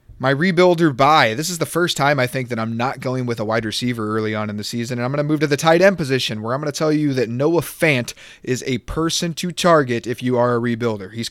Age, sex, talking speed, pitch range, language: 30-49, male, 280 wpm, 125-155 Hz, English